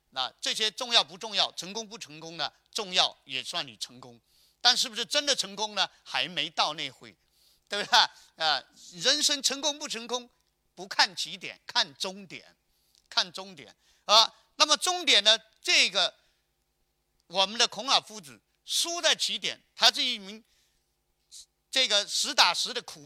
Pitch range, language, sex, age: 175-270 Hz, Chinese, male, 50-69